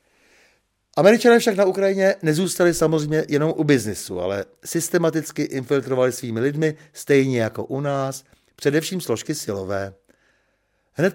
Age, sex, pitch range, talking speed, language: 60-79, male, 120-170 Hz, 120 wpm, Czech